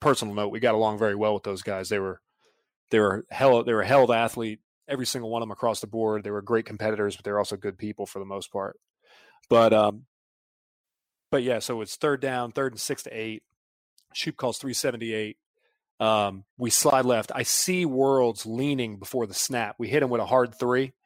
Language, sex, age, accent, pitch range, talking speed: English, male, 30-49, American, 110-135 Hz, 215 wpm